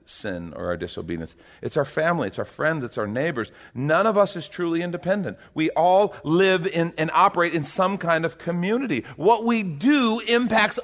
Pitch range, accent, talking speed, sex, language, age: 150-225 Hz, American, 185 wpm, male, English, 40-59